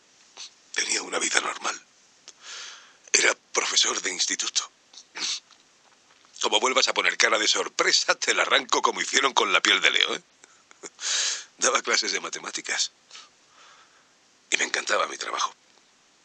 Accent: Spanish